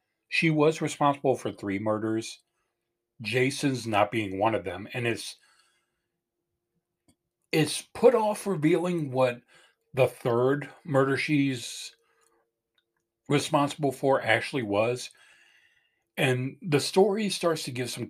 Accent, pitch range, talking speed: American, 115-145 Hz, 115 wpm